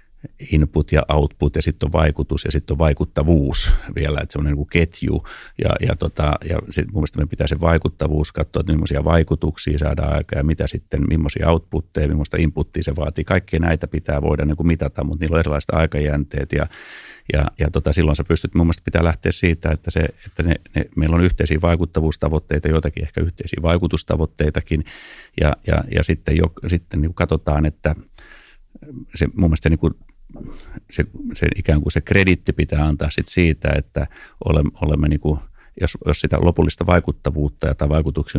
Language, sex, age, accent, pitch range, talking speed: Finnish, male, 30-49, native, 75-85 Hz, 170 wpm